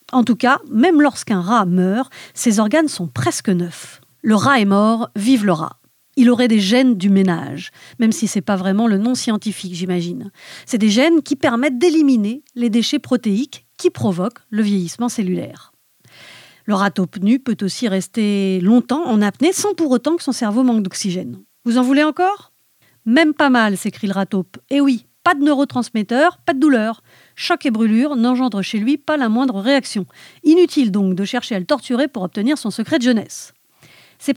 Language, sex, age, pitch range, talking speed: French, female, 50-69, 205-280 Hz, 195 wpm